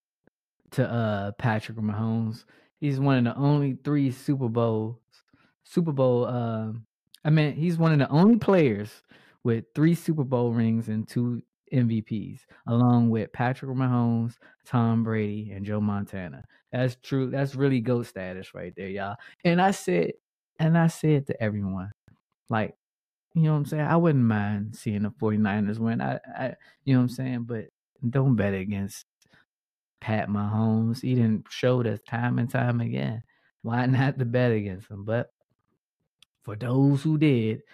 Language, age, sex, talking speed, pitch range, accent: English, 20-39, male, 165 wpm, 110-135 Hz, American